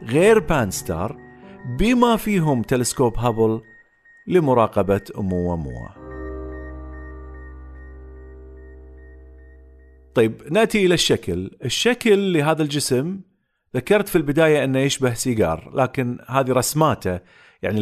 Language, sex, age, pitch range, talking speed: Arabic, male, 50-69, 100-150 Hz, 90 wpm